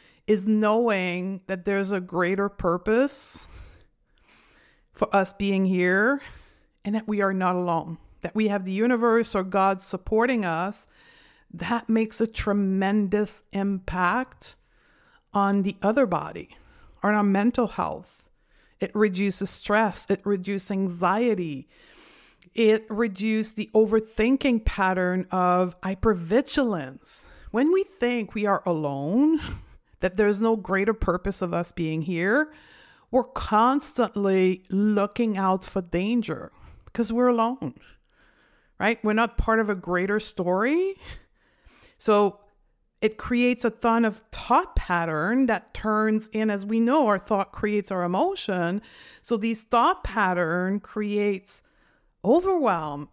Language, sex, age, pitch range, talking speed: English, female, 50-69, 190-230 Hz, 125 wpm